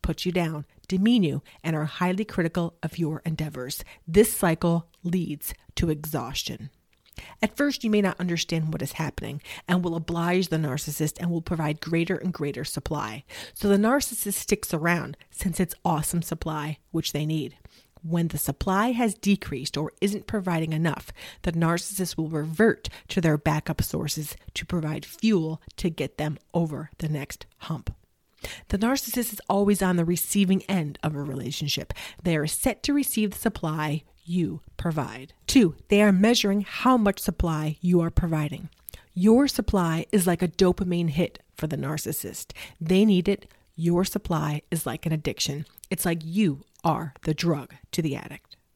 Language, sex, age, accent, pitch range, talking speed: English, female, 40-59, American, 155-190 Hz, 165 wpm